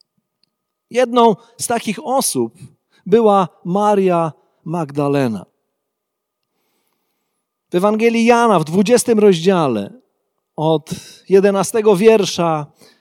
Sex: male